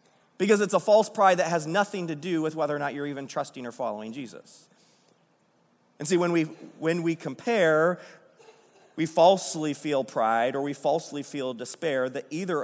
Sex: male